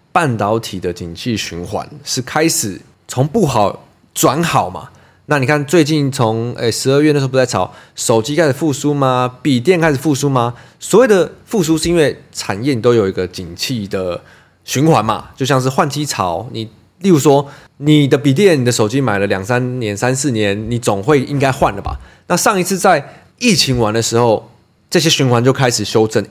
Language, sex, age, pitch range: Chinese, male, 20-39, 110-160 Hz